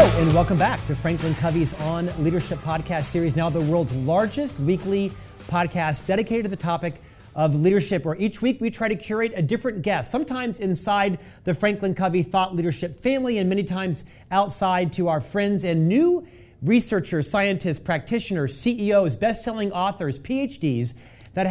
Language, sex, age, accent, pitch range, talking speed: English, male, 40-59, American, 165-210 Hz, 160 wpm